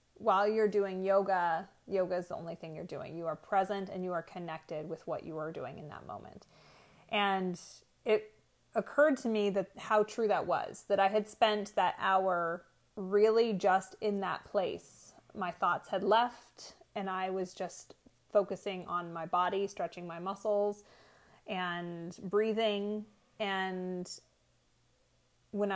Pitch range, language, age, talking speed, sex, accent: 180-210 Hz, English, 30-49, 155 wpm, female, American